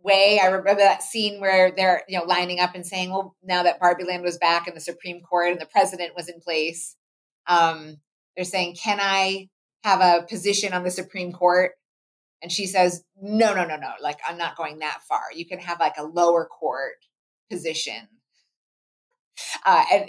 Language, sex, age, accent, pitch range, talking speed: English, female, 30-49, American, 170-205 Hz, 195 wpm